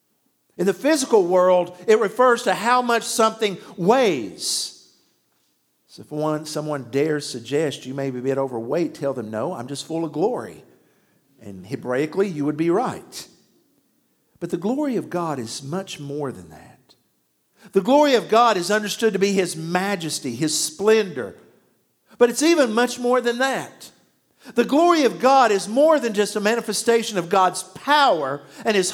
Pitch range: 160-235 Hz